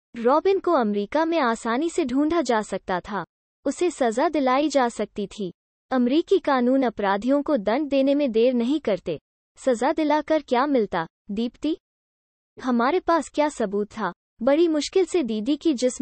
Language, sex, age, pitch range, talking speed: Hindi, female, 20-39, 225-305 Hz, 155 wpm